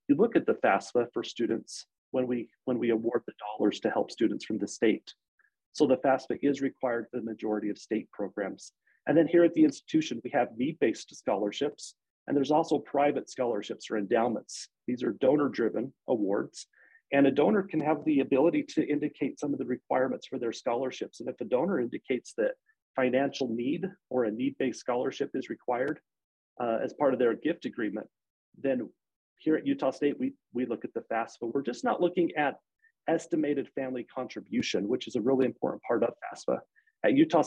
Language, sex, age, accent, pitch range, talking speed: English, male, 40-59, American, 130-175 Hz, 185 wpm